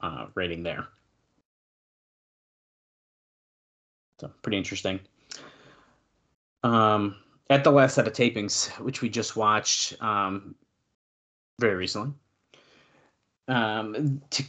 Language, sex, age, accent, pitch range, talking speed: English, male, 30-49, American, 105-135 Hz, 85 wpm